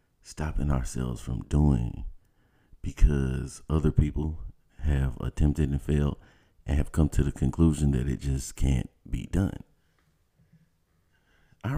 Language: English